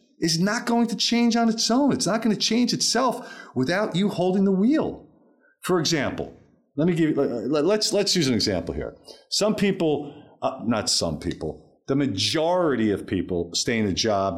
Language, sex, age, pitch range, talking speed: English, male, 40-59, 105-165 Hz, 185 wpm